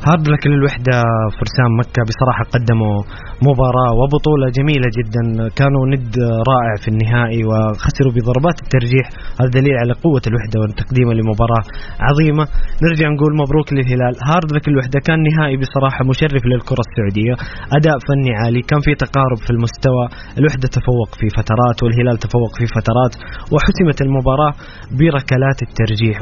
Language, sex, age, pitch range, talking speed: Arabic, male, 20-39, 115-135 Hz, 135 wpm